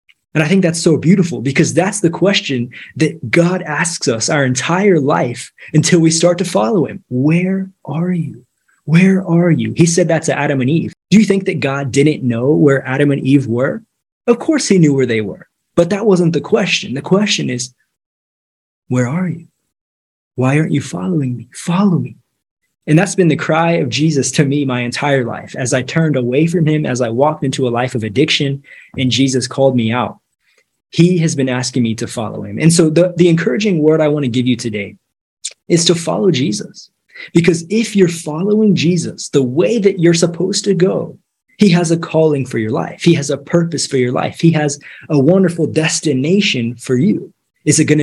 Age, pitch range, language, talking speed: 20-39, 135-175 Hz, English, 205 wpm